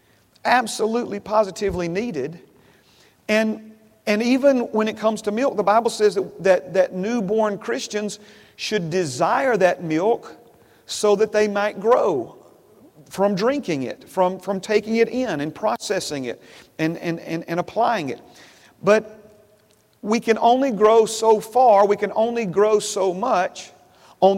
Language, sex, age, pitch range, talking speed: English, male, 40-59, 160-210 Hz, 145 wpm